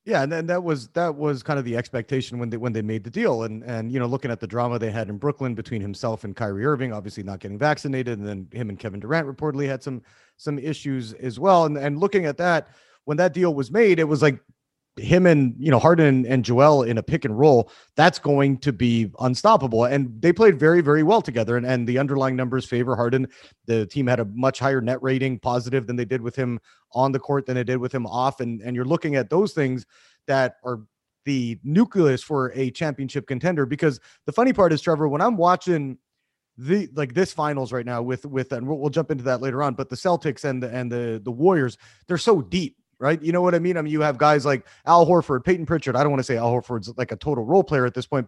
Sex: male